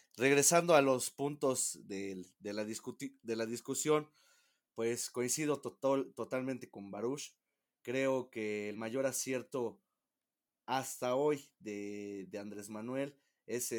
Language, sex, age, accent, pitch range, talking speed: Spanish, male, 30-49, Mexican, 105-135 Hz, 125 wpm